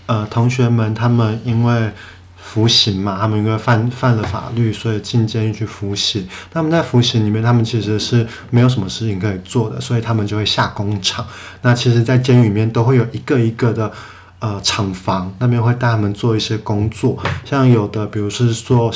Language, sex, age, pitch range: Chinese, male, 20-39, 105-125 Hz